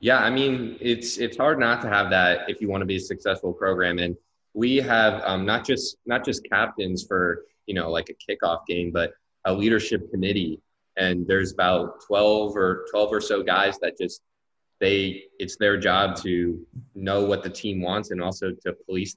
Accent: American